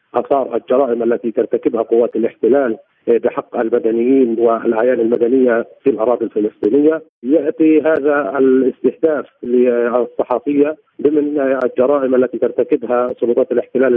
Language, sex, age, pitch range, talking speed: Arabic, male, 40-59, 120-140 Hz, 100 wpm